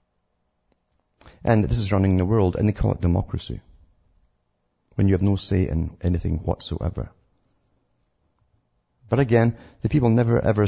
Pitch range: 85-100 Hz